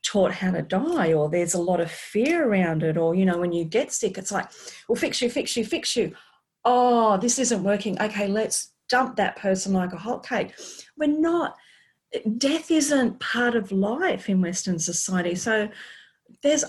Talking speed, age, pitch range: 190 wpm, 40-59, 175-230 Hz